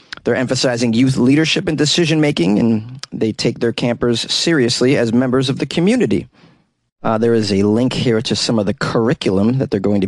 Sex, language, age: male, English, 30-49